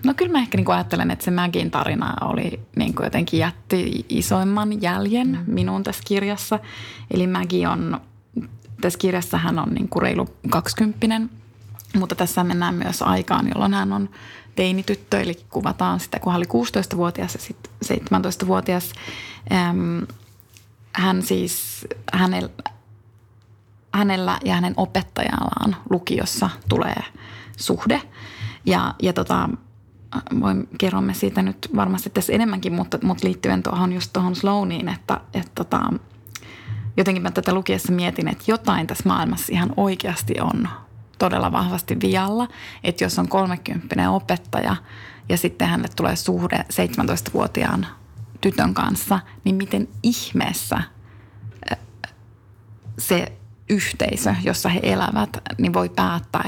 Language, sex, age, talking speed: Finnish, female, 30-49, 125 wpm